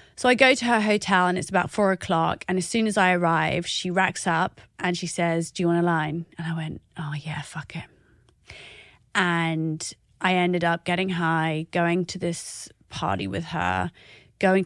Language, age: English, 30-49